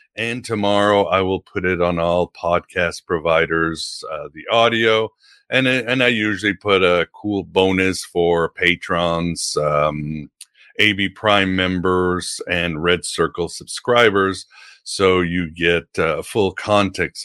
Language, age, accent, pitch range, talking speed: English, 50-69, American, 90-115 Hz, 130 wpm